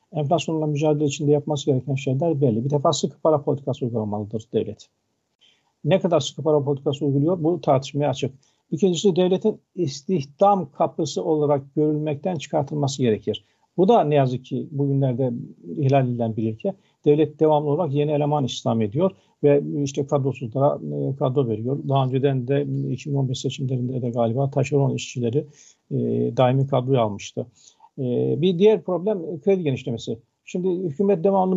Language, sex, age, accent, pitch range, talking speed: Turkish, male, 50-69, native, 135-165 Hz, 145 wpm